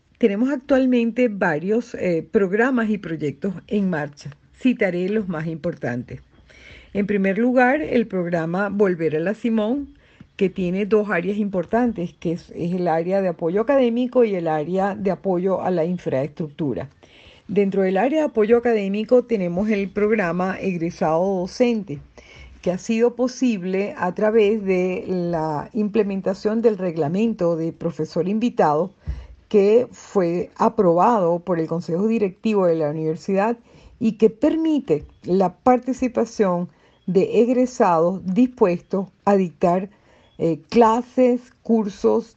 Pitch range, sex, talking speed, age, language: 175-225 Hz, female, 130 wpm, 50-69, Spanish